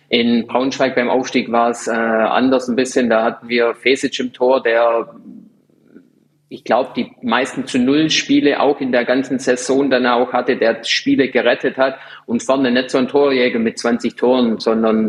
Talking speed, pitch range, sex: 185 wpm, 120-140 Hz, male